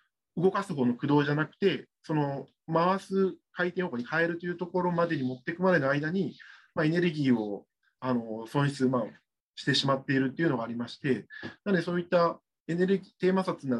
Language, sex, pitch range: Japanese, male, 130-175 Hz